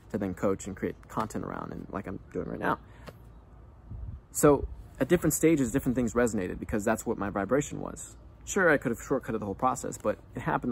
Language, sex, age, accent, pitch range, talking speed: English, male, 20-39, American, 105-125 Hz, 200 wpm